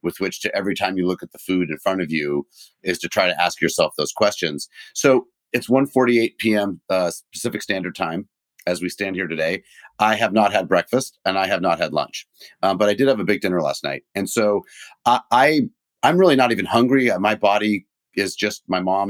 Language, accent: English, American